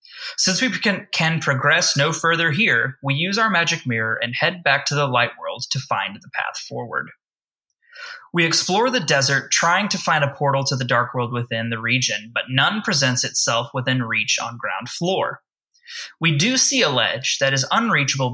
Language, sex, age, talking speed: English, male, 20-39, 190 wpm